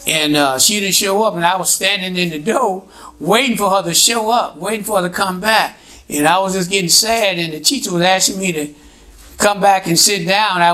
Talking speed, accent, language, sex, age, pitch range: 245 wpm, American, English, male, 60-79, 165-215 Hz